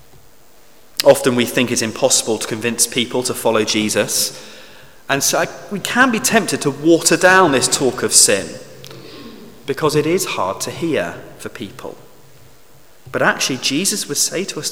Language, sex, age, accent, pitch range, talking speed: English, male, 30-49, British, 125-165 Hz, 165 wpm